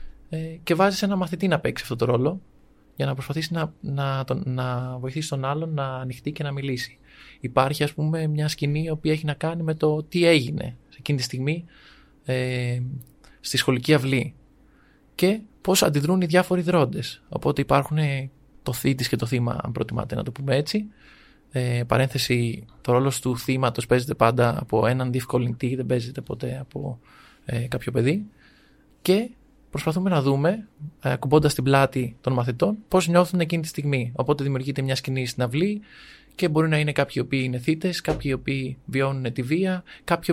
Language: Greek